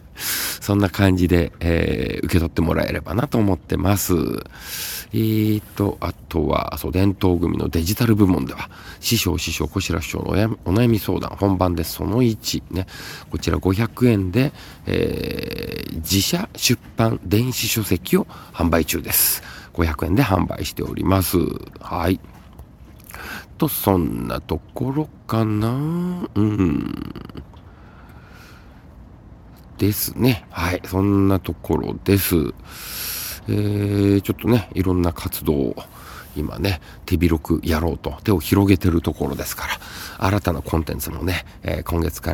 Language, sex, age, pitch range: Japanese, male, 50-69, 85-105 Hz